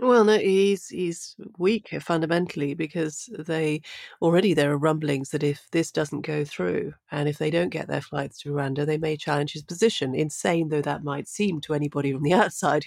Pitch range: 150-195 Hz